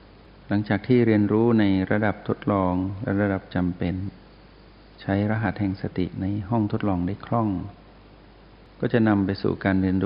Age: 60-79